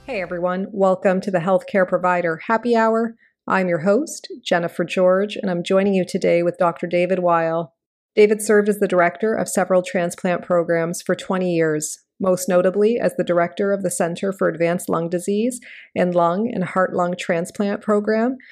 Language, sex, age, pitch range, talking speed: English, female, 40-59, 170-200 Hz, 175 wpm